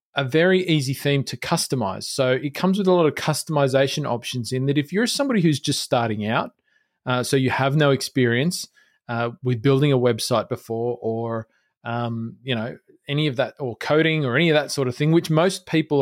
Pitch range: 130-160 Hz